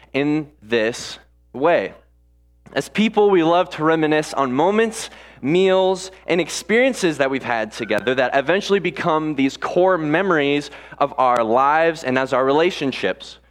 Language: English